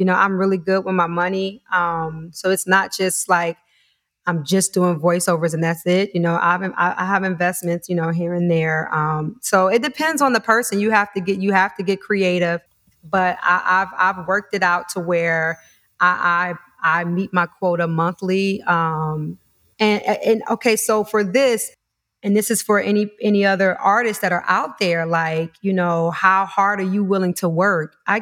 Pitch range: 170-195 Hz